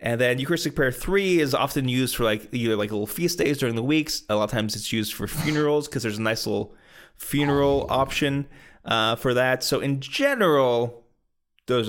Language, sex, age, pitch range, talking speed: English, male, 20-39, 115-145 Hz, 200 wpm